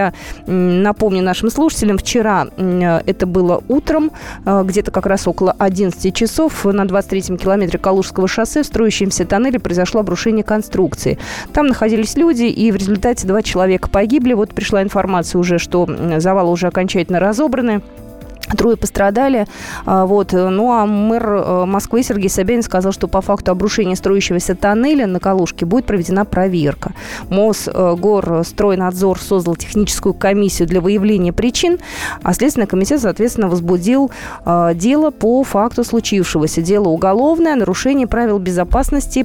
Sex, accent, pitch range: female, native, 185-230 Hz